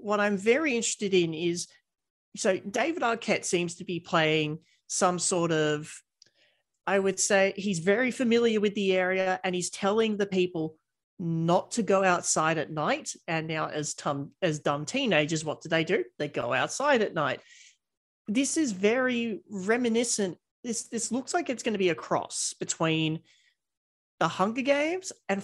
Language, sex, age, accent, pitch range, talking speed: English, male, 40-59, Australian, 155-210 Hz, 165 wpm